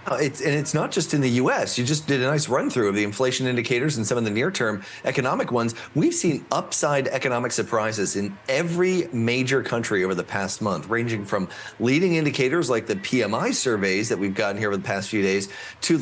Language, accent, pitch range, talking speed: English, American, 110-140 Hz, 215 wpm